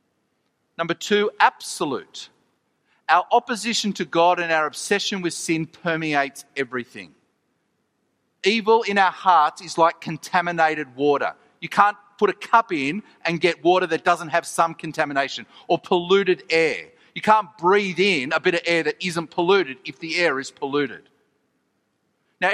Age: 40-59